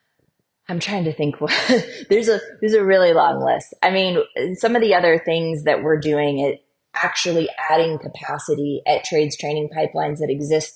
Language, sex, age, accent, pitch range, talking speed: English, female, 20-39, American, 150-170 Hz, 175 wpm